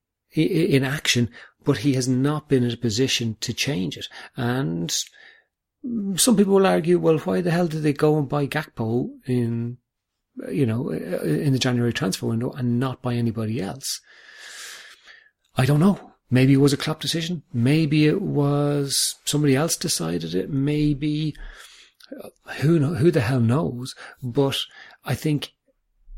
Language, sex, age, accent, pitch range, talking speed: English, male, 40-59, British, 115-145 Hz, 155 wpm